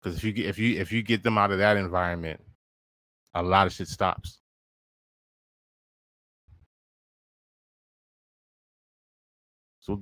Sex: male